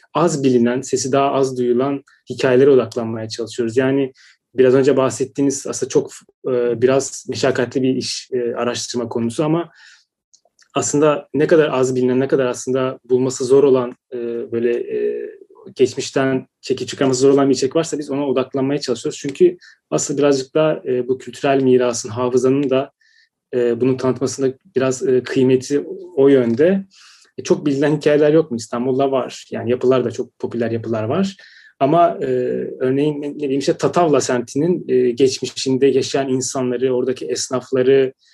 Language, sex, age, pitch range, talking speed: Turkish, male, 30-49, 130-155 Hz, 135 wpm